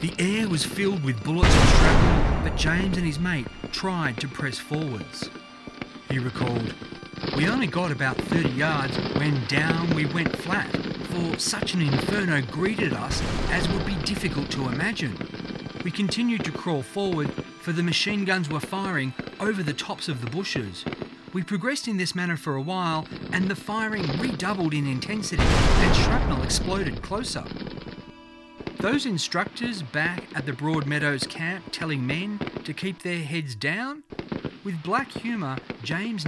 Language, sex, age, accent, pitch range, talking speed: English, male, 40-59, Australian, 150-195 Hz, 155 wpm